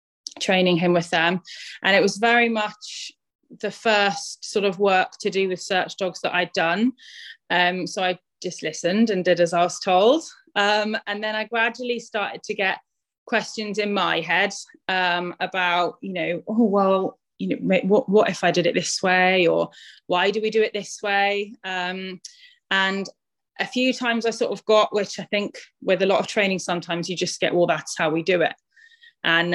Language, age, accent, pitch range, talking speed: English, 20-39, British, 175-215 Hz, 195 wpm